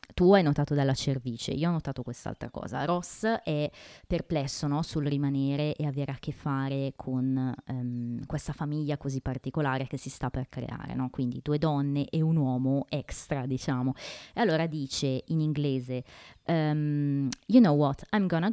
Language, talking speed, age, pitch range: Italian, 155 wpm, 20-39, 140-185 Hz